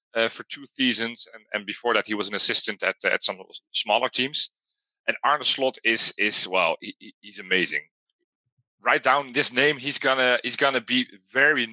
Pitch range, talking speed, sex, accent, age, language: 110-130 Hz, 190 wpm, male, Belgian, 40-59, English